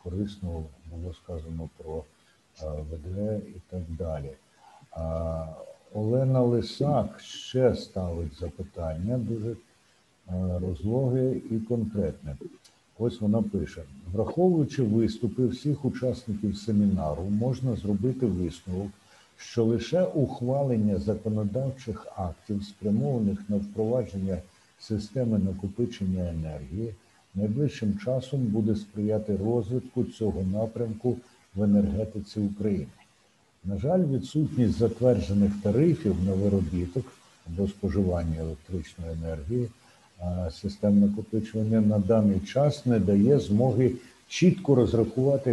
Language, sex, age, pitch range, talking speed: Ukrainian, male, 60-79, 95-120 Hz, 95 wpm